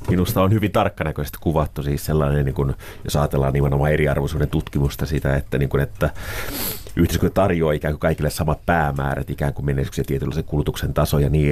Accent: native